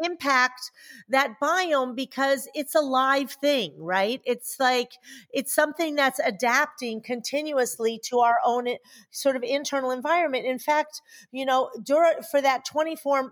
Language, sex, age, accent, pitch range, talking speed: English, female, 40-59, American, 235-295 Hz, 135 wpm